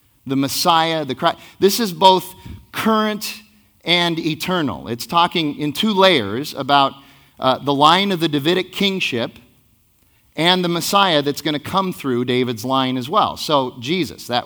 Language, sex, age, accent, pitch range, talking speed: English, male, 30-49, American, 130-190 Hz, 160 wpm